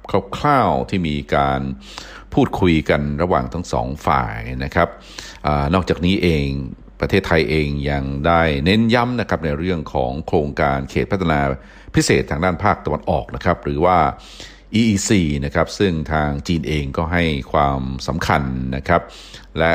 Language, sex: Thai, male